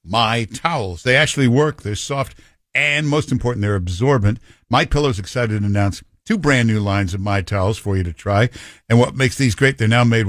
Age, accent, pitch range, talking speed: 60-79, American, 100-130 Hz, 210 wpm